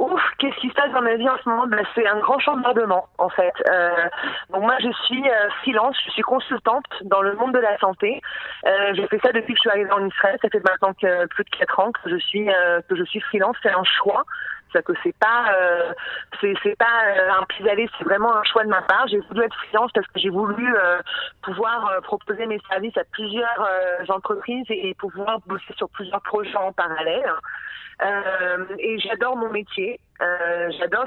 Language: French